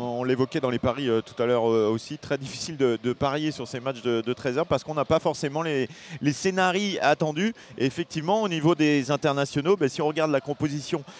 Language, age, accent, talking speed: French, 30-49, French, 235 wpm